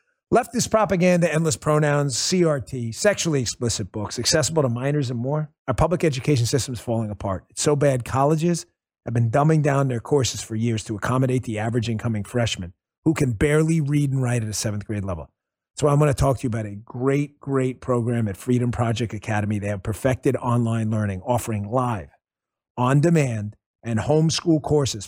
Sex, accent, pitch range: male, American, 115-150 Hz